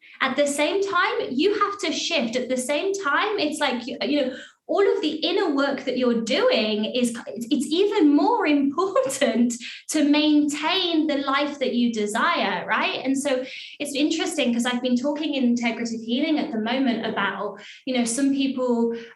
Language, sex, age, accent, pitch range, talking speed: English, female, 20-39, British, 240-300 Hz, 175 wpm